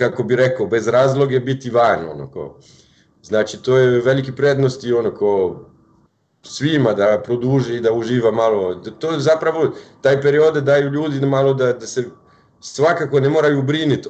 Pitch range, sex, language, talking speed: 115-140 Hz, male, Croatian, 155 wpm